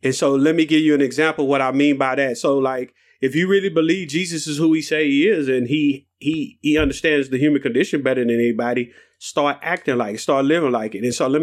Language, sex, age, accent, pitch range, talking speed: English, male, 30-49, American, 130-155 Hz, 255 wpm